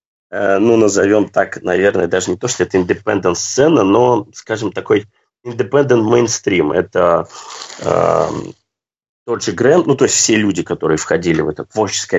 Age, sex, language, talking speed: 30-49, male, Russian, 140 wpm